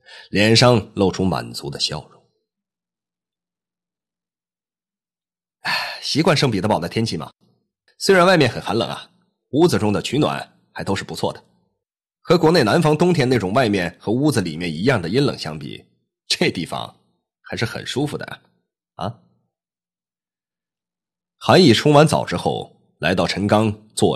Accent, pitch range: native, 80-120 Hz